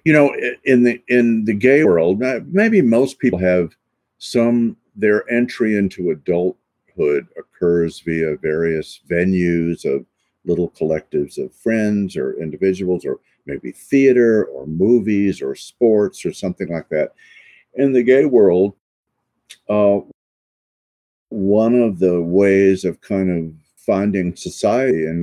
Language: English